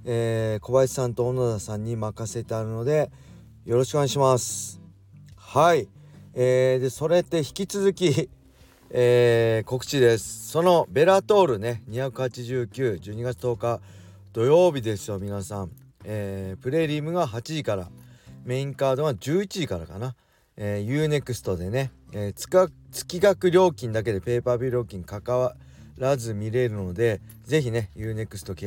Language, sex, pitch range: Japanese, male, 100-135 Hz